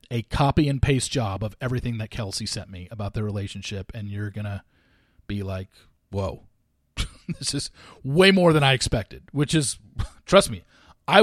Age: 40-59